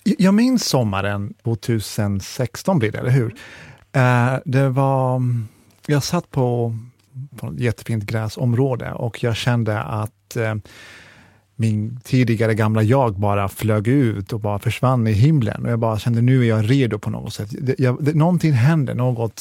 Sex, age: male, 30-49